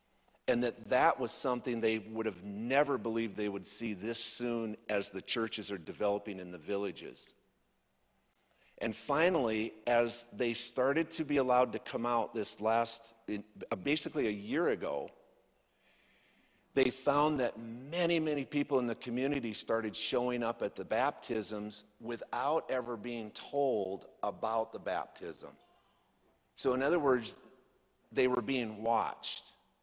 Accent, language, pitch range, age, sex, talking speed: American, English, 110-130 Hz, 50-69, male, 140 wpm